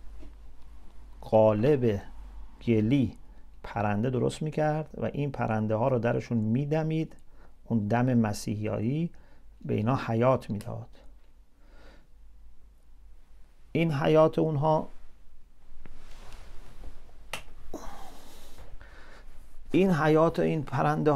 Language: English